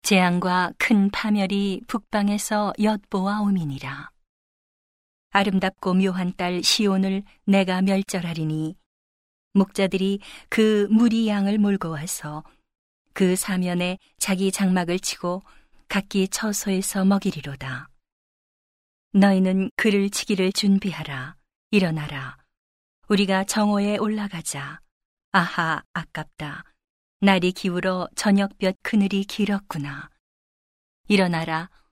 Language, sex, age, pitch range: Korean, female, 40-59, 170-205 Hz